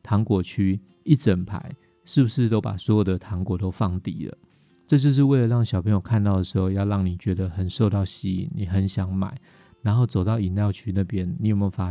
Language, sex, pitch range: Chinese, male, 95-115 Hz